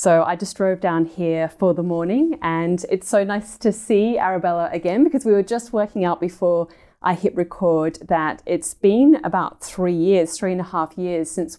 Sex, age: female, 30-49